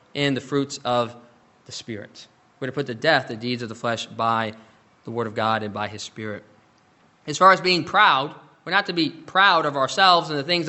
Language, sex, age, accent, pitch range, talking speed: English, male, 20-39, American, 120-170 Hz, 225 wpm